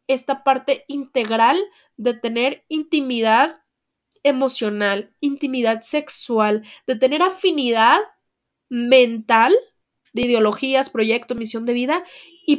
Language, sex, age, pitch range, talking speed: Spanish, female, 30-49, 230-285 Hz, 95 wpm